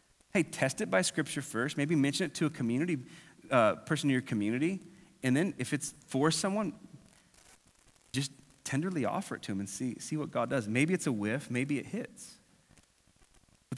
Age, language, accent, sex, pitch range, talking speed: 30-49, English, American, male, 120-170 Hz, 185 wpm